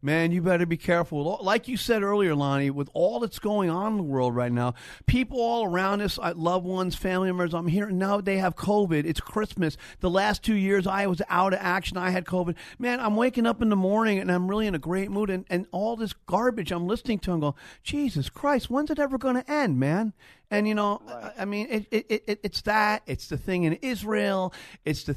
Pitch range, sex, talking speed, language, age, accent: 165-210 Hz, male, 235 wpm, English, 40-59, American